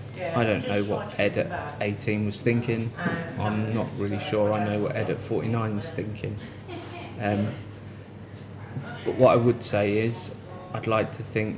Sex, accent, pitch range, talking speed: male, British, 105-115 Hz, 170 wpm